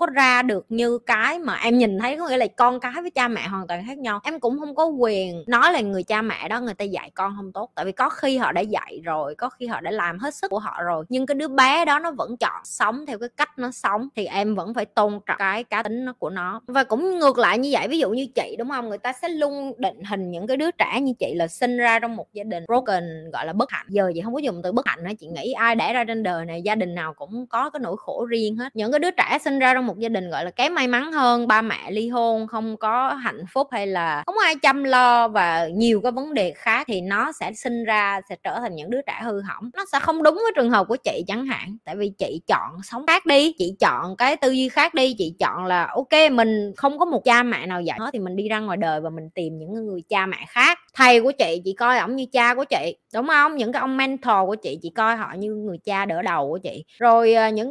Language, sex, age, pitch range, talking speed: Vietnamese, female, 20-39, 200-260 Hz, 290 wpm